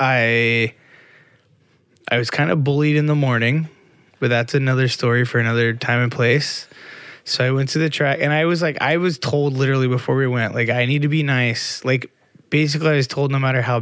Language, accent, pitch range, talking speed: English, American, 120-150 Hz, 215 wpm